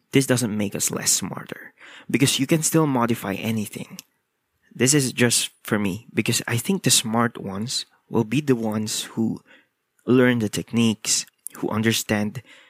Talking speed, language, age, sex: 155 wpm, English, 20-39, male